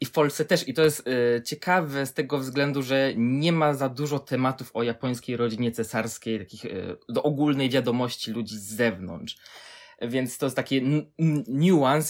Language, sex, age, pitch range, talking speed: Polish, male, 20-39, 120-145 Hz, 165 wpm